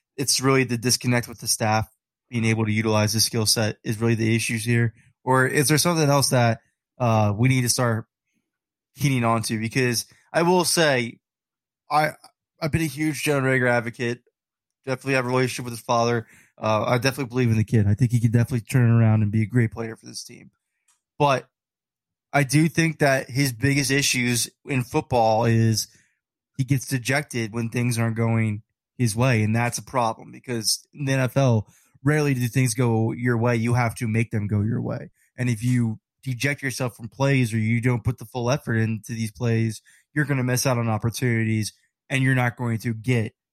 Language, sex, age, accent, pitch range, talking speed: English, male, 20-39, American, 115-135 Hz, 200 wpm